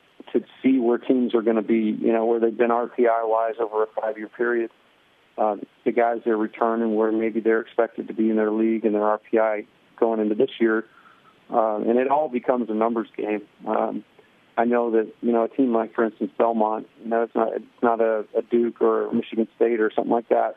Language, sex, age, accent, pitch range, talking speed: English, male, 40-59, American, 110-115 Hz, 225 wpm